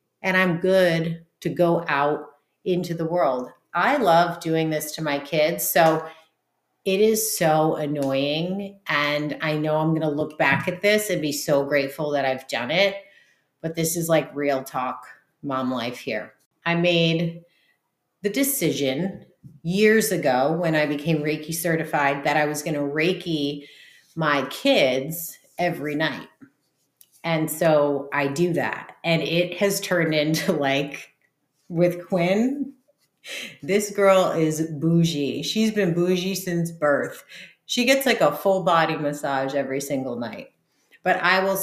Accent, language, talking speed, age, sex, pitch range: American, English, 145 wpm, 30-49, female, 150-180 Hz